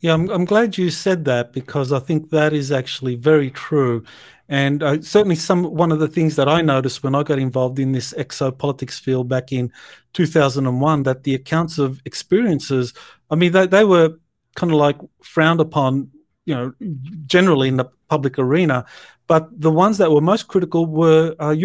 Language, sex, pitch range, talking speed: English, male, 140-170 Hz, 190 wpm